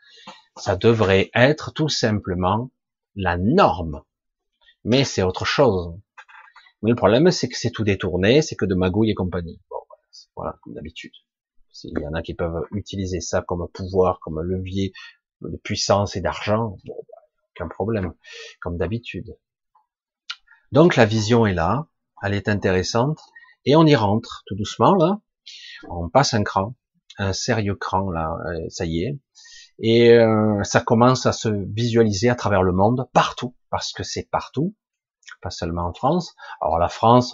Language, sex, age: French, male, 30-49